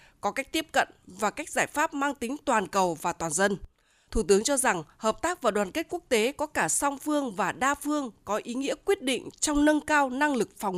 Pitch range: 205-295 Hz